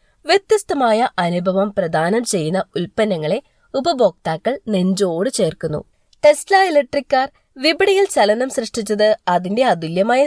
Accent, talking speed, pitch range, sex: native, 95 wpm, 200-285 Hz, female